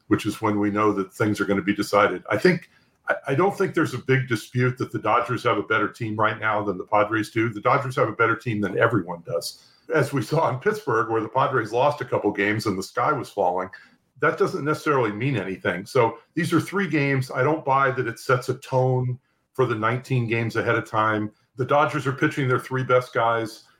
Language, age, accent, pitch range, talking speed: English, 50-69, American, 105-135 Hz, 235 wpm